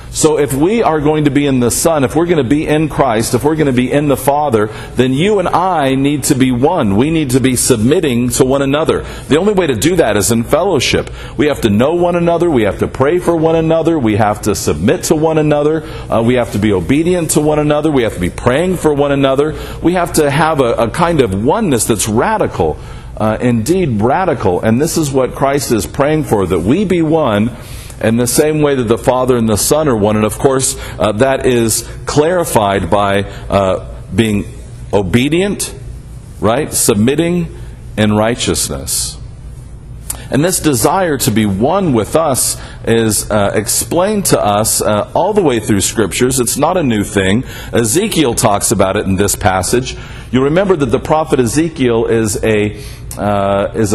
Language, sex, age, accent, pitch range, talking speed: English, male, 50-69, American, 110-150 Hz, 200 wpm